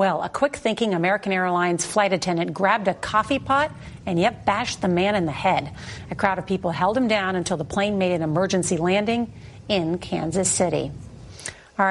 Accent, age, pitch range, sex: American, 40-59, 175-210 Hz, female